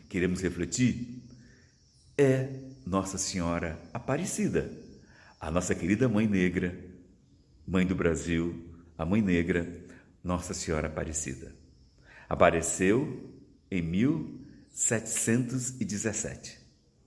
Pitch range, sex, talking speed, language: 80-105 Hz, male, 80 wpm, Portuguese